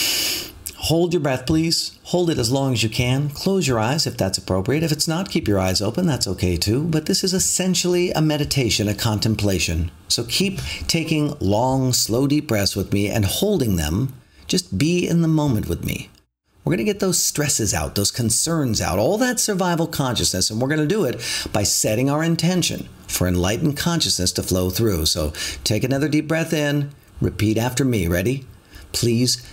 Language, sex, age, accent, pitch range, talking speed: English, male, 50-69, American, 95-145 Hz, 195 wpm